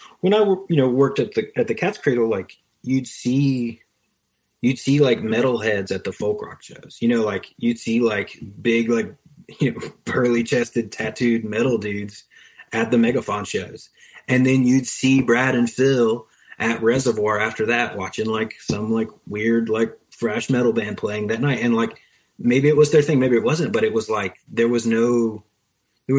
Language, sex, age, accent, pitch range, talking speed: English, male, 30-49, American, 105-130 Hz, 190 wpm